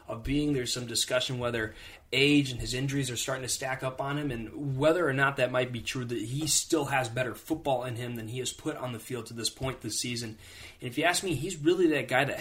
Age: 20-39